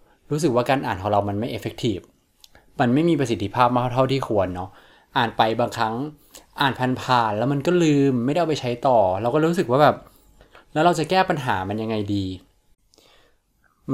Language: Thai